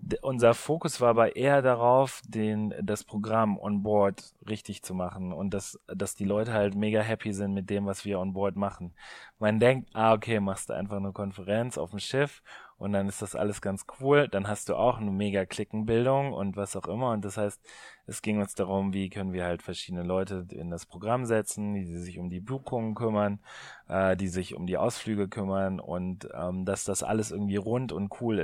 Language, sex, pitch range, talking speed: German, male, 95-110 Hz, 210 wpm